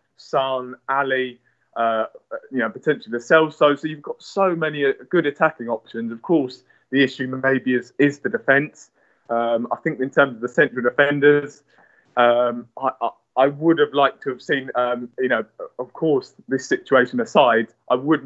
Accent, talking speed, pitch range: British, 180 wpm, 125-145 Hz